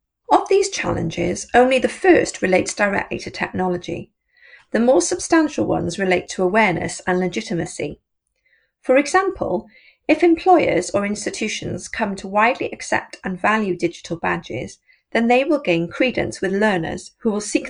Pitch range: 180-300 Hz